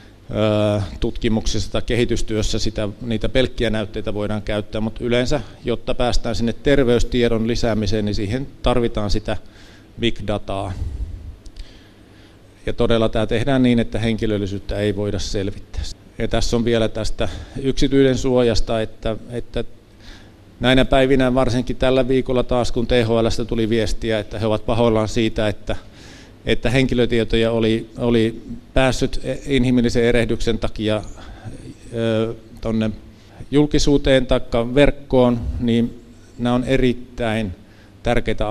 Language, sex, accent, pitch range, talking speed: Finnish, male, native, 105-120 Hz, 115 wpm